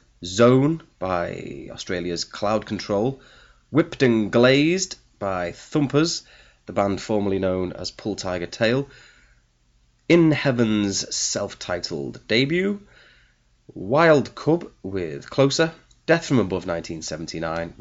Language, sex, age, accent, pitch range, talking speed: English, male, 30-49, British, 85-130 Hz, 100 wpm